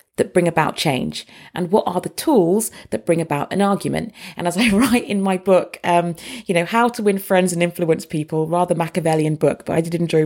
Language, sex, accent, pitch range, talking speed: English, female, British, 165-205 Hz, 220 wpm